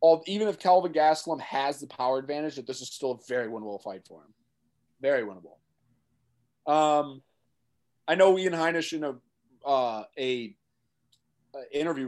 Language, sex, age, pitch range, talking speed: English, male, 20-39, 125-160 Hz, 160 wpm